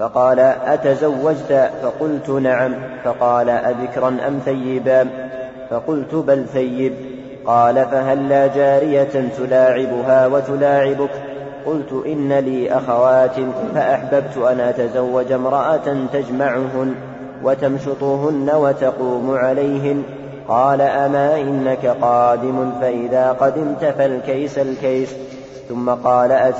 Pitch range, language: 130-140 Hz, Arabic